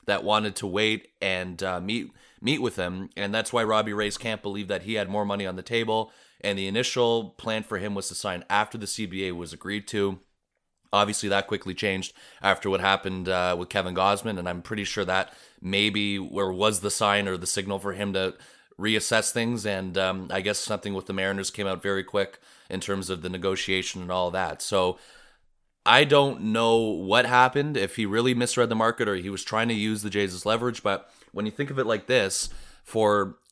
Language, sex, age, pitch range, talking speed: English, male, 30-49, 95-110 Hz, 210 wpm